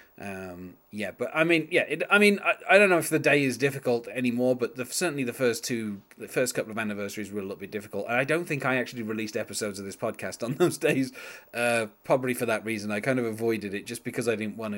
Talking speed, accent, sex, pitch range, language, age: 250 wpm, British, male, 110-135 Hz, English, 30-49